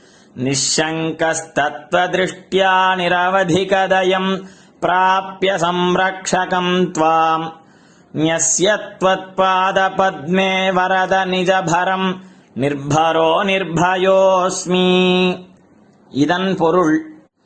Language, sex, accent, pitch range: Tamil, male, native, 165-190 Hz